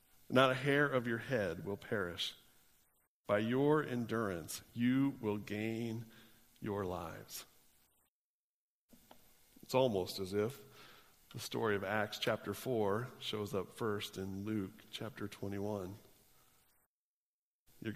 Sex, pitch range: male, 105-130 Hz